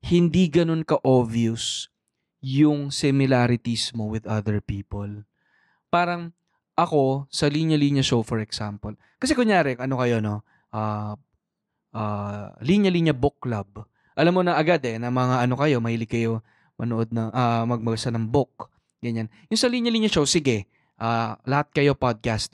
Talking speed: 140 wpm